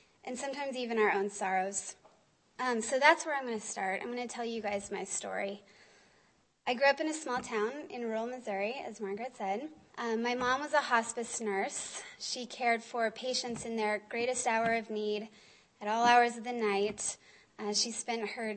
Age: 20-39